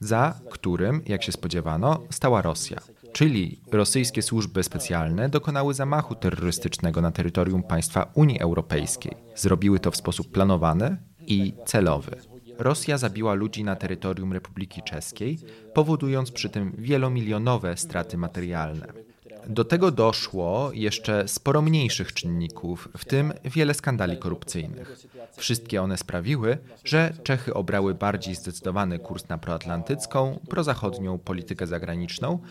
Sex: male